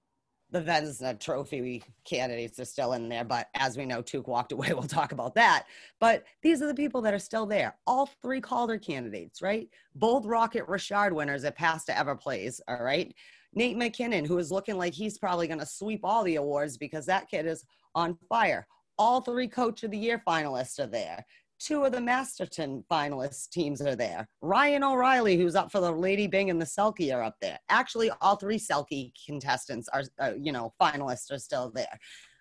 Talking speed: 200 wpm